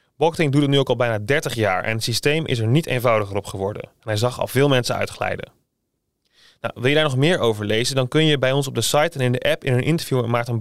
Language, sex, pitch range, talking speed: Dutch, male, 115-140 Hz, 275 wpm